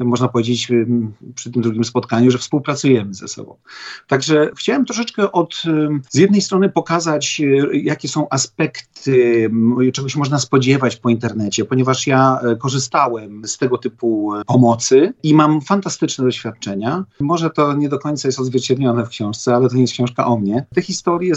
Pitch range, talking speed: 115-150 Hz, 155 wpm